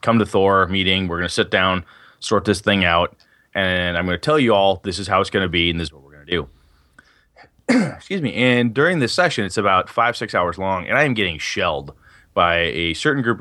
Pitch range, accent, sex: 95-135 Hz, American, male